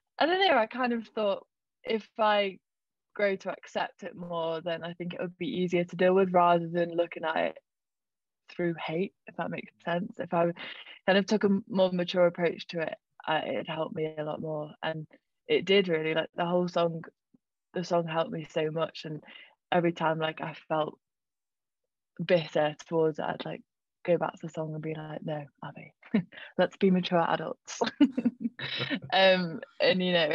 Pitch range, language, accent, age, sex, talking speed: 160-185 Hz, English, British, 20-39, female, 190 wpm